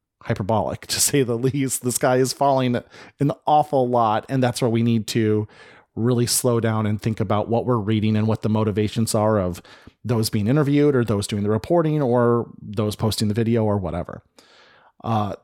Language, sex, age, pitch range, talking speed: English, male, 30-49, 110-135 Hz, 190 wpm